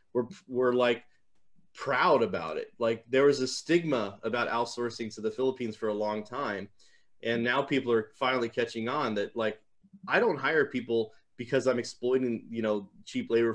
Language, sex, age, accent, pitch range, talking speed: English, male, 20-39, American, 110-130 Hz, 175 wpm